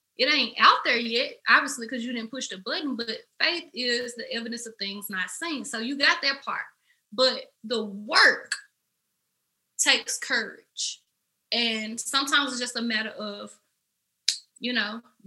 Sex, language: female, English